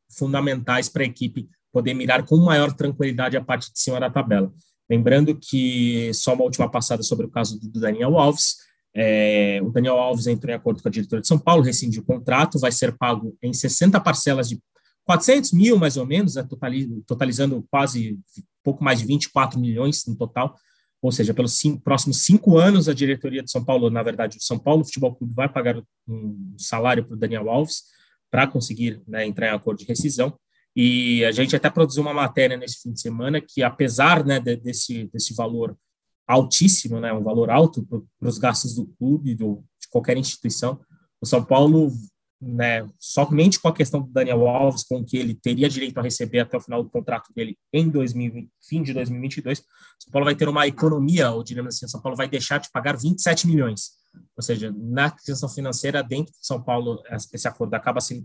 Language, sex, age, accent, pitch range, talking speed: Portuguese, male, 20-39, Brazilian, 120-145 Hz, 190 wpm